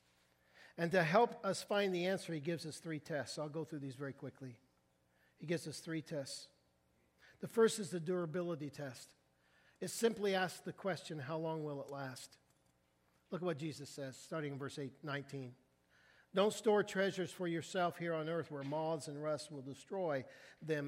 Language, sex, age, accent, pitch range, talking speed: English, male, 50-69, American, 140-195 Hz, 180 wpm